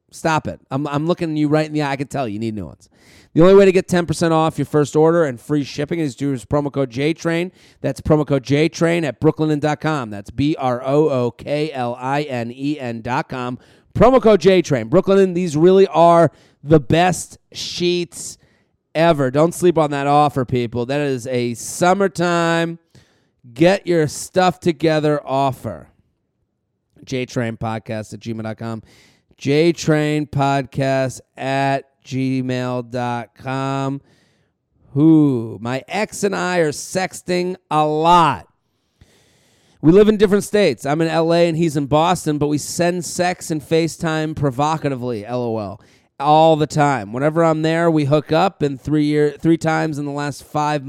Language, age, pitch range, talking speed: English, 30-49, 130-165 Hz, 160 wpm